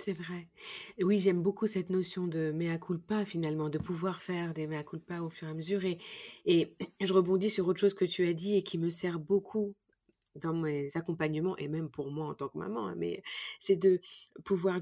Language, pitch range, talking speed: French, 175-215 Hz, 220 wpm